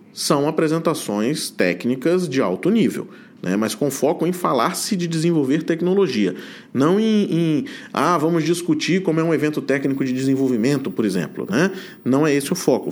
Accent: Brazilian